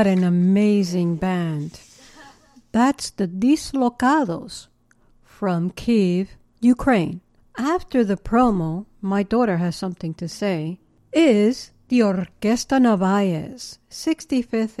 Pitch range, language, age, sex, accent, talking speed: 200-265 Hz, English, 60-79, female, American, 95 wpm